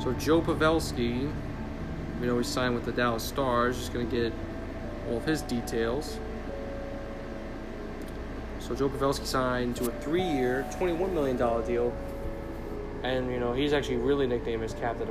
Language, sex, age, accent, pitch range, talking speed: English, male, 20-39, American, 110-140 Hz, 155 wpm